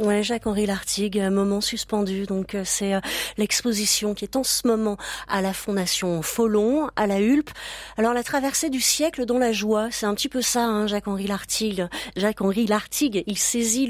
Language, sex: French, female